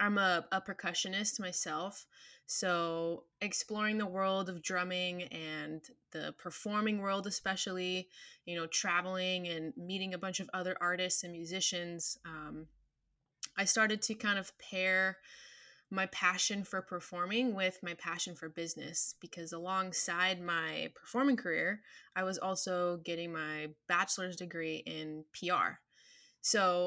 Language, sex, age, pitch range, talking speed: English, female, 20-39, 170-200 Hz, 130 wpm